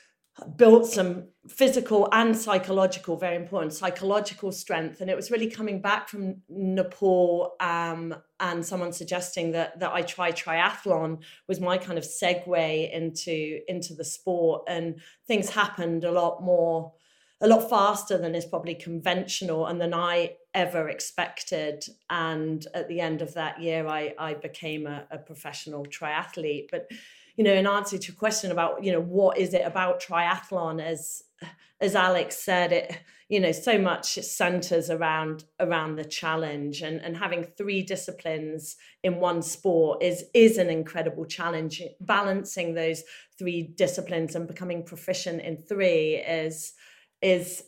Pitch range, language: 165-190 Hz, English